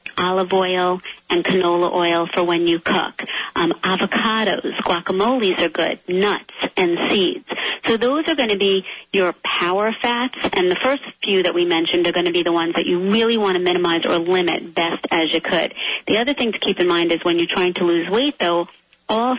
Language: English